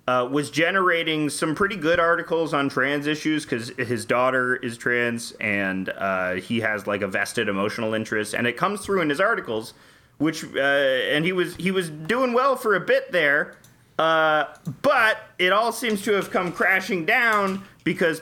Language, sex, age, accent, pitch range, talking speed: English, male, 30-49, American, 120-170 Hz, 180 wpm